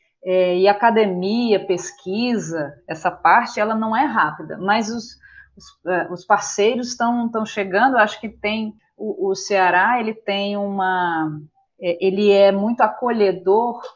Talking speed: 140 wpm